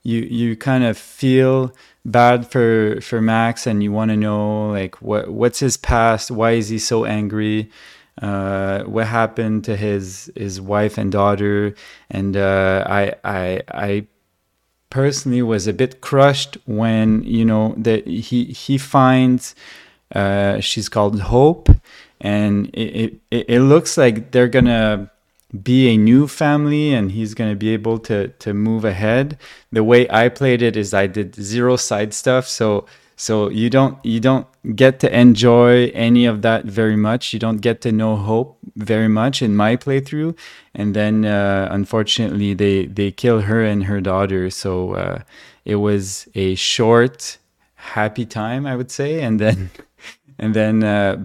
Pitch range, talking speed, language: 105-120 Hz, 160 wpm, English